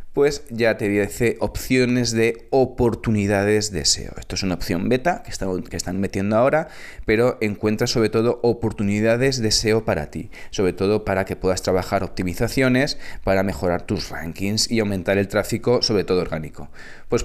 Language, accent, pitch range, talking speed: Spanish, Spanish, 90-115 Hz, 165 wpm